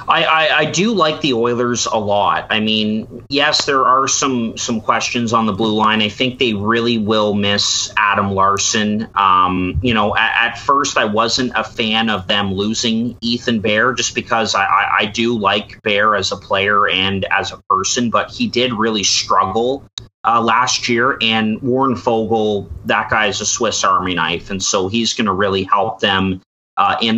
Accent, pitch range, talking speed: American, 105-120 Hz, 190 wpm